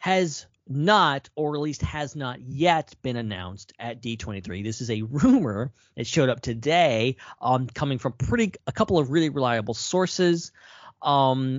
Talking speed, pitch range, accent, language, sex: 160 wpm, 110-140 Hz, American, English, male